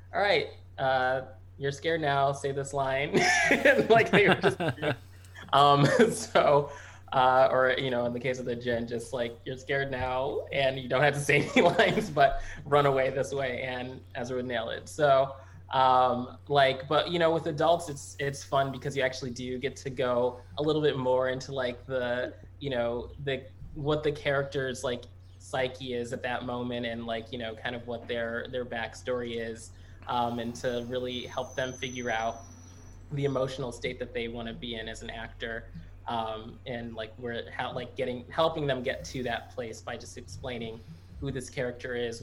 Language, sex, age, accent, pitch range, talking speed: English, male, 20-39, American, 115-135 Hz, 195 wpm